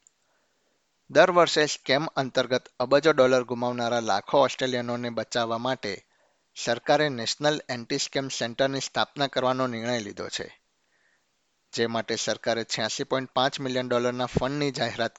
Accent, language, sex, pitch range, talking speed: native, Gujarati, male, 120-135 Hz, 105 wpm